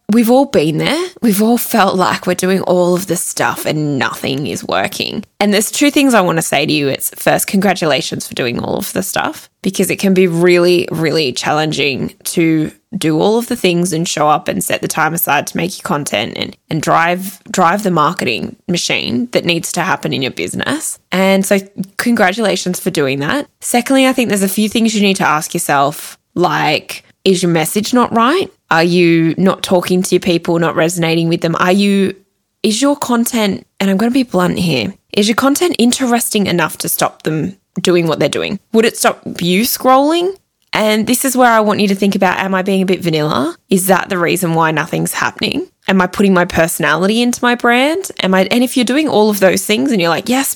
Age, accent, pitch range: 10-29, Australian, 170-230 Hz